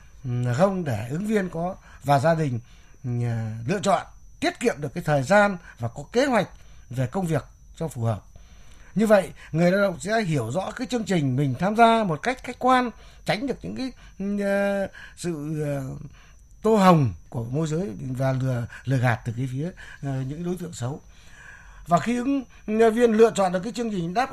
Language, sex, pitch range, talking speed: Vietnamese, male, 140-210 Hz, 185 wpm